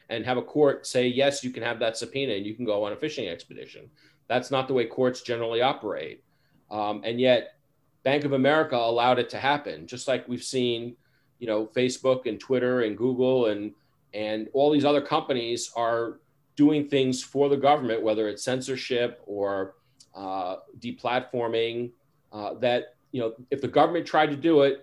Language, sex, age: English, male, 40-59